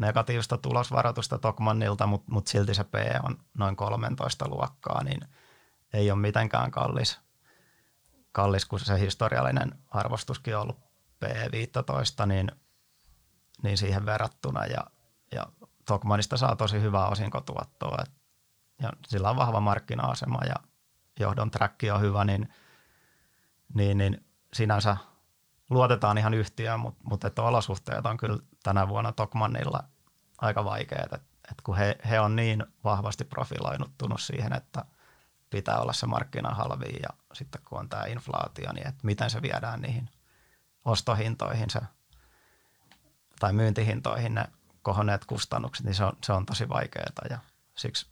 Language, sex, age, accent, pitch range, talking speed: Finnish, male, 30-49, native, 105-120 Hz, 130 wpm